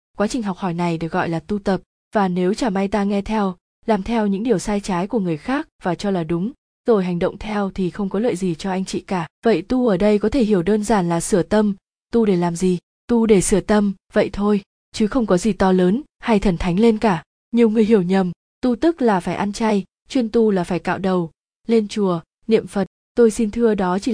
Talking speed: 250 wpm